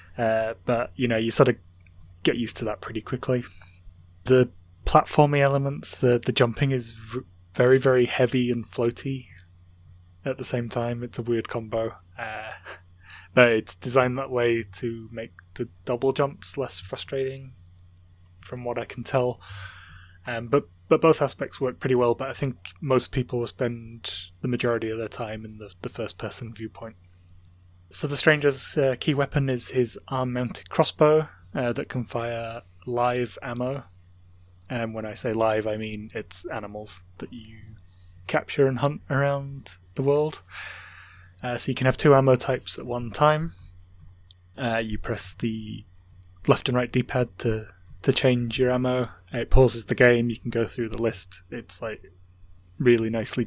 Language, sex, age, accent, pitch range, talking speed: English, male, 20-39, British, 95-125 Hz, 165 wpm